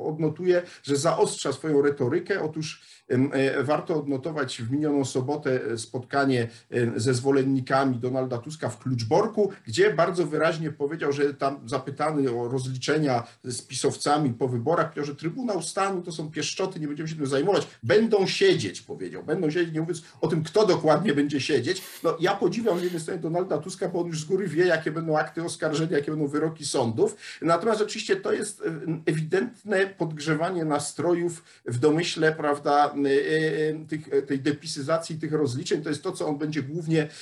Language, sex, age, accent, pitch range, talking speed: Polish, male, 50-69, native, 140-170 Hz, 155 wpm